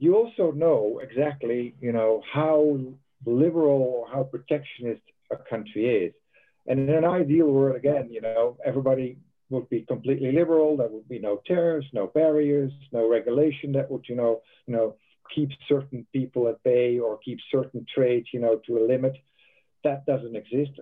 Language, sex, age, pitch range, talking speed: English, male, 50-69, 115-145 Hz, 170 wpm